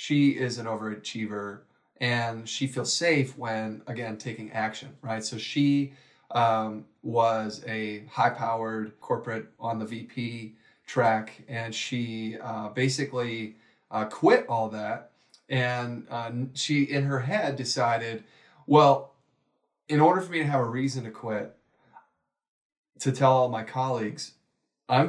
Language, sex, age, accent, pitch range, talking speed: English, male, 30-49, American, 110-135 Hz, 135 wpm